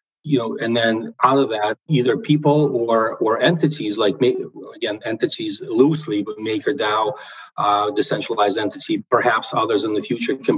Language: English